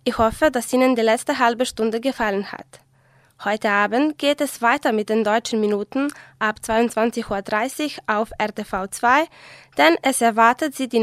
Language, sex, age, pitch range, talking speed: German, female, 20-39, 215-265 Hz, 160 wpm